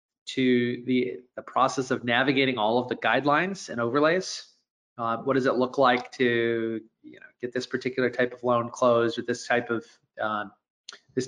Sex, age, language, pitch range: male, 30-49, English, 120-145 Hz